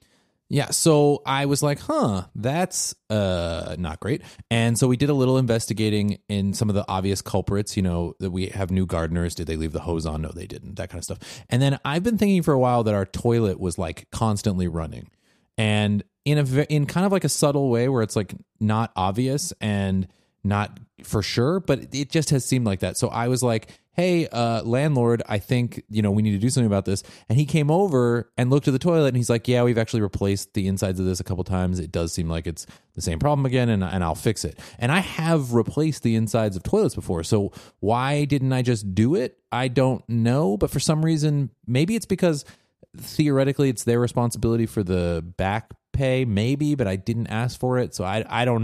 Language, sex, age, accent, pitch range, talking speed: English, male, 30-49, American, 100-135 Hz, 225 wpm